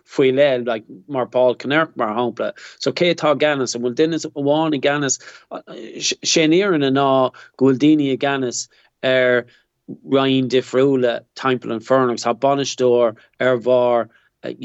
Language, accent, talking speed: English, Irish, 125 wpm